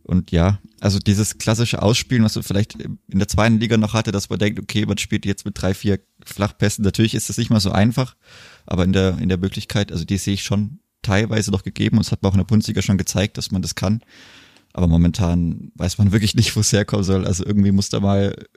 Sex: male